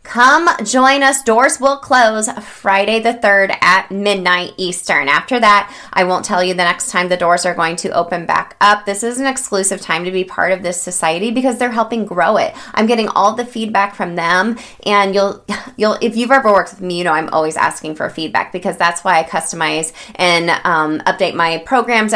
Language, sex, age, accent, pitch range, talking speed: English, female, 20-39, American, 175-210 Hz, 210 wpm